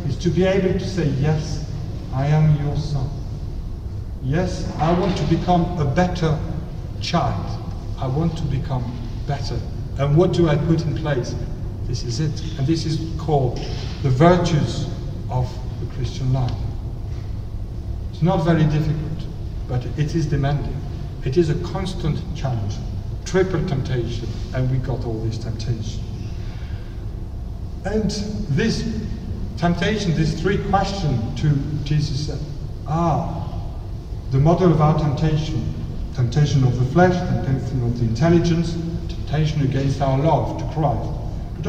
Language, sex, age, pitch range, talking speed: English, male, 50-69, 115-160 Hz, 135 wpm